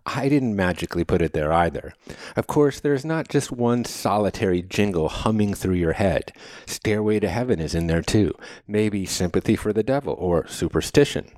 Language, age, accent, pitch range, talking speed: English, 50-69, American, 90-125 Hz, 175 wpm